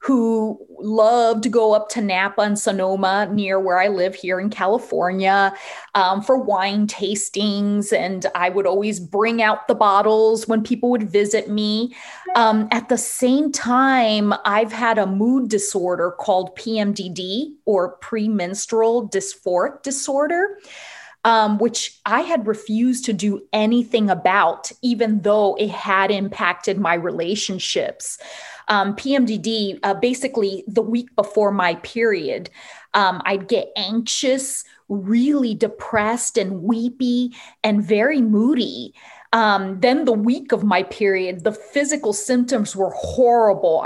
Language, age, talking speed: English, 30-49, 135 wpm